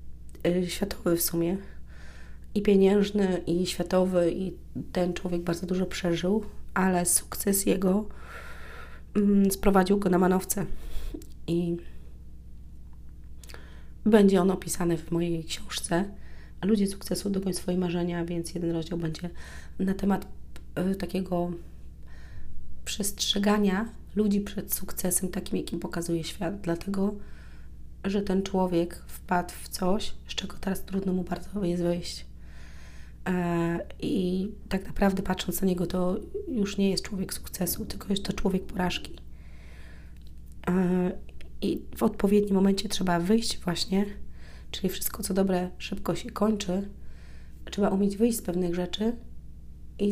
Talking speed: 125 wpm